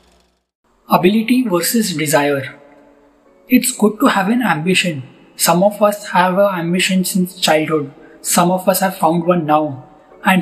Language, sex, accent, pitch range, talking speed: English, male, Indian, 170-210 Hz, 145 wpm